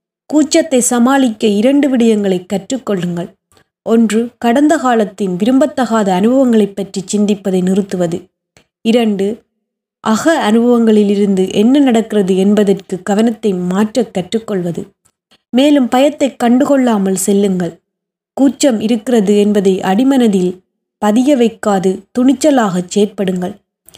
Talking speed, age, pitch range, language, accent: 85 wpm, 20-39, 195-255 Hz, Tamil, native